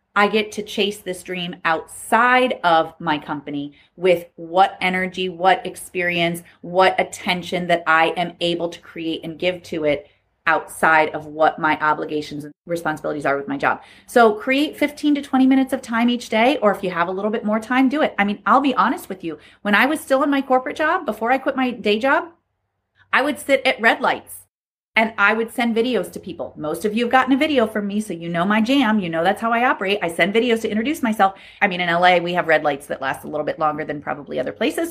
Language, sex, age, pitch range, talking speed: English, female, 30-49, 175-255 Hz, 235 wpm